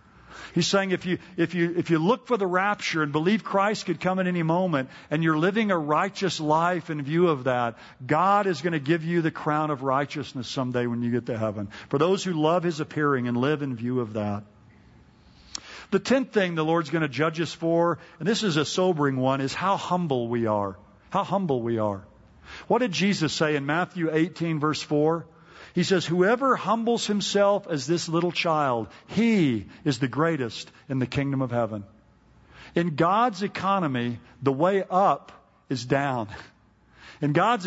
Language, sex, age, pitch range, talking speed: English, male, 50-69, 135-180 Hz, 190 wpm